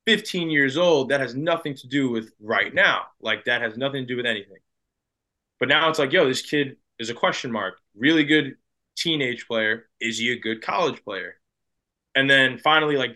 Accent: American